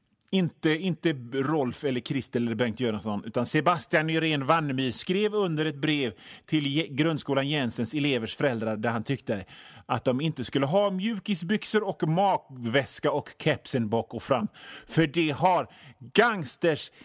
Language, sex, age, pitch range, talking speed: Swedish, male, 30-49, 120-175 Hz, 145 wpm